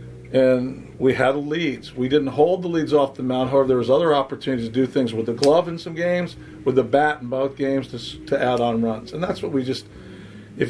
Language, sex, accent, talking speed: English, male, American, 245 wpm